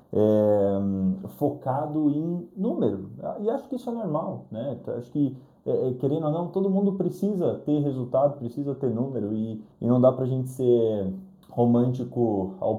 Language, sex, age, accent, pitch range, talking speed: Portuguese, male, 20-39, Brazilian, 115-155 Hz, 150 wpm